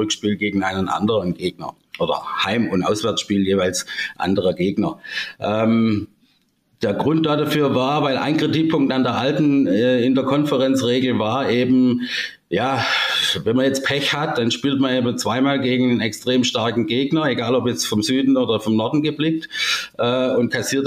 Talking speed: 165 wpm